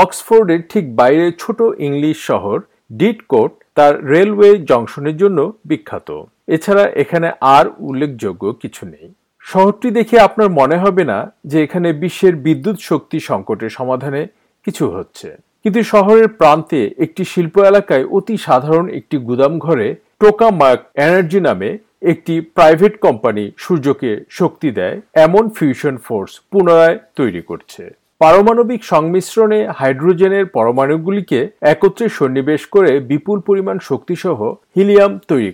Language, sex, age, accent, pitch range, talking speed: Bengali, male, 50-69, native, 150-205 Hz, 65 wpm